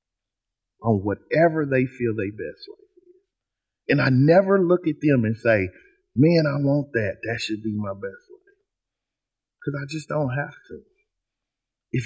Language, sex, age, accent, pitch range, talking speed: English, male, 50-69, American, 120-175 Hz, 160 wpm